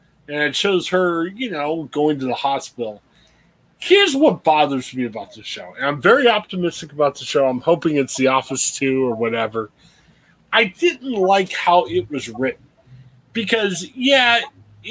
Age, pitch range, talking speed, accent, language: 20-39, 130-195 Hz, 165 wpm, American, English